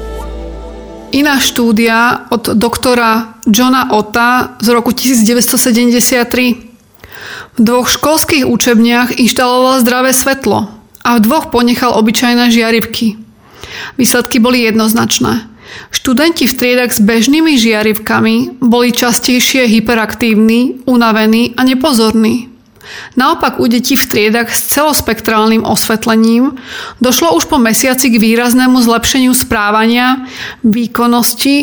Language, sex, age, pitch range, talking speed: Slovak, female, 30-49, 225-255 Hz, 100 wpm